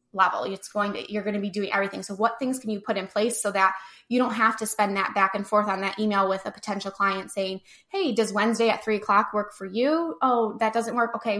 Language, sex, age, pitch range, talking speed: English, female, 10-29, 200-230 Hz, 270 wpm